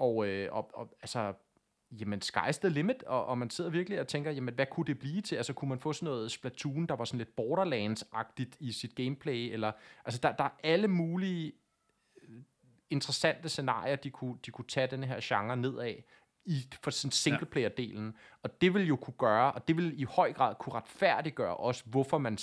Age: 30-49